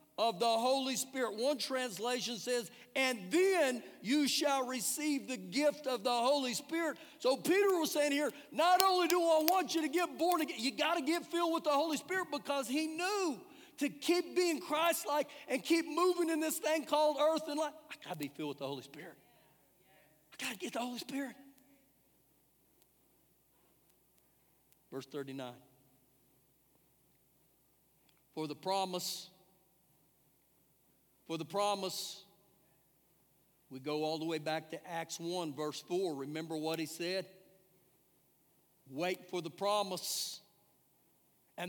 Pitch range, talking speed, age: 175-290 Hz, 150 wpm, 50-69